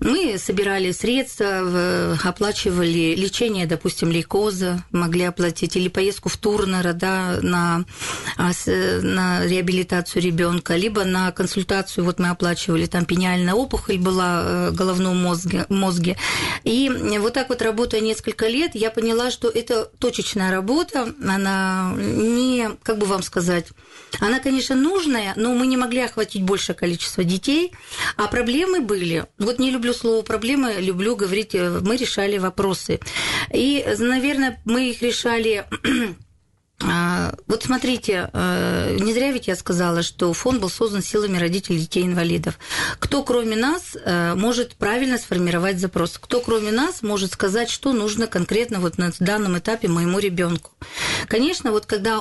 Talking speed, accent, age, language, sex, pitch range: 135 wpm, native, 40-59, Russian, female, 180-230 Hz